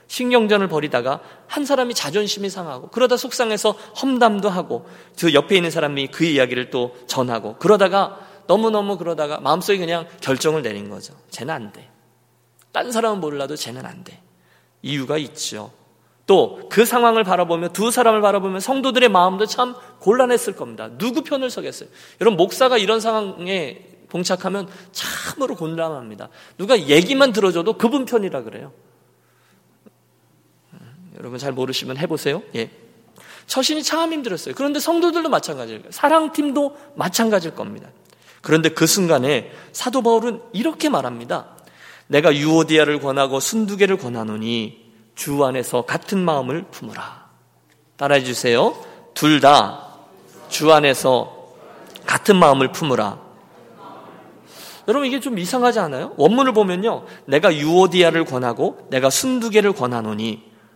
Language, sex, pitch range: Korean, male, 140-235 Hz